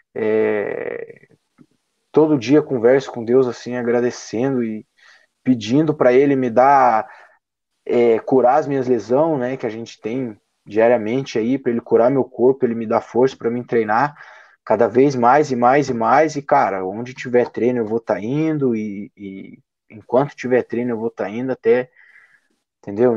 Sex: male